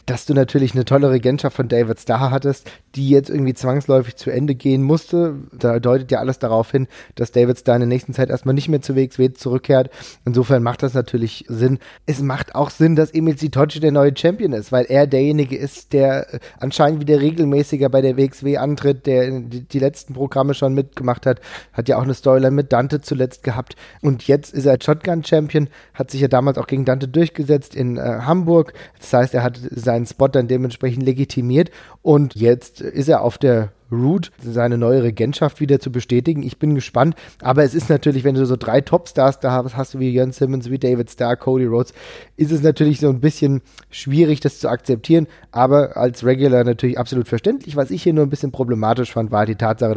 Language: German